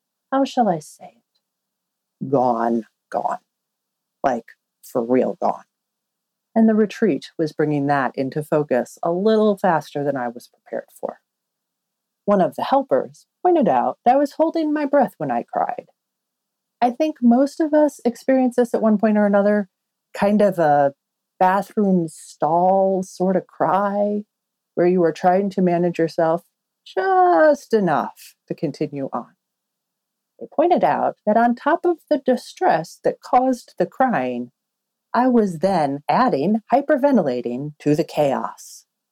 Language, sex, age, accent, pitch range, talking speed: English, female, 40-59, American, 165-230 Hz, 145 wpm